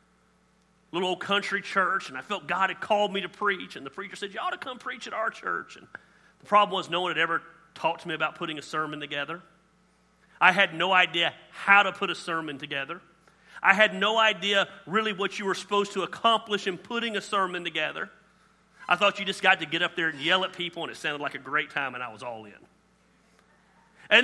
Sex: male